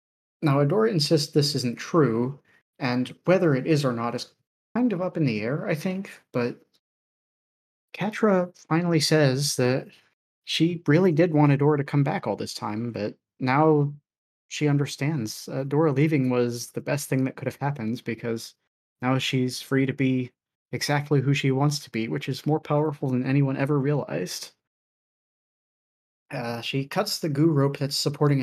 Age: 30-49